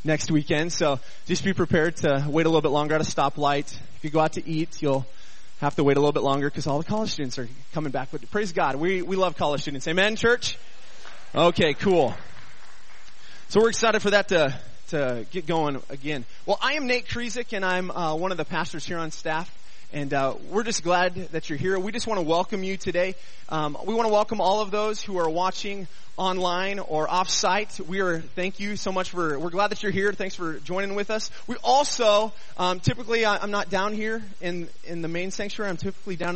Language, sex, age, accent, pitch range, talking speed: English, male, 20-39, American, 165-220 Hz, 225 wpm